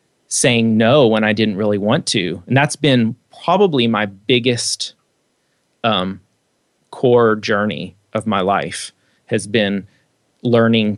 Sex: male